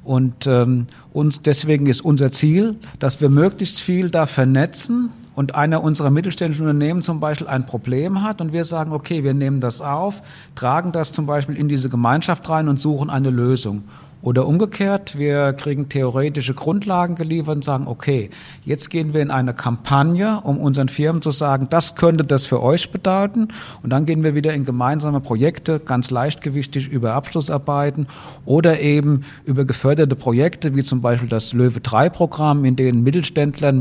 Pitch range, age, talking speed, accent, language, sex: 130-155 Hz, 50-69, 170 wpm, German, German, male